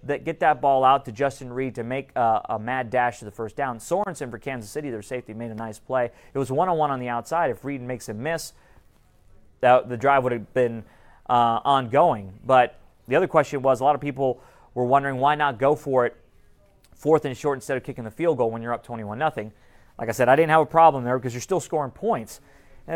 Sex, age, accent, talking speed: male, 30-49, American, 240 wpm